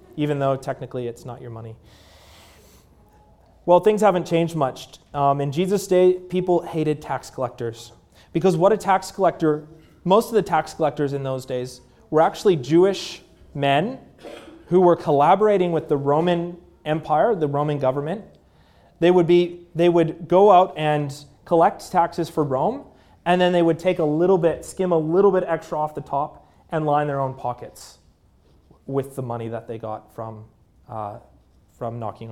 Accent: American